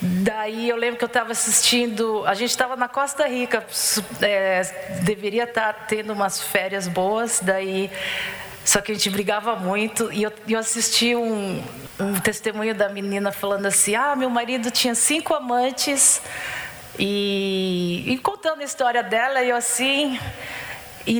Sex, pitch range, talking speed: female, 200-245 Hz, 155 wpm